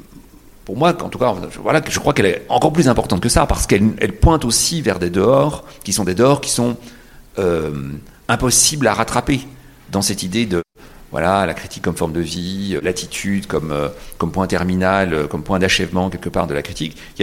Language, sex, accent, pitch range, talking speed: French, male, French, 90-135 Hz, 200 wpm